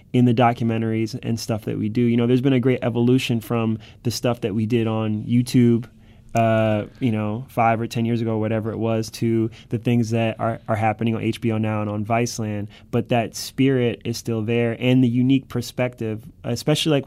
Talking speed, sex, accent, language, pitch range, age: 205 wpm, male, American, English, 110-120 Hz, 20-39